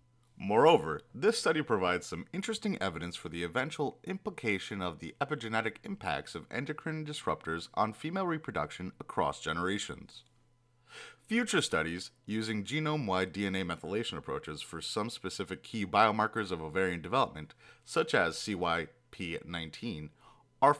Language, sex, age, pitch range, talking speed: English, male, 30-49, 95-150 Hz, 120 wpm